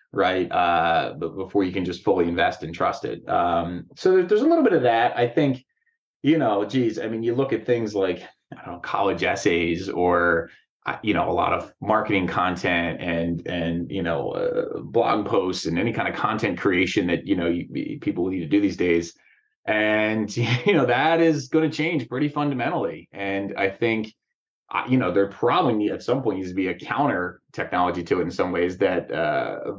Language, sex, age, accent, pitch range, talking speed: English, male, 30-49, American, 95-140 Hz, 195 wpm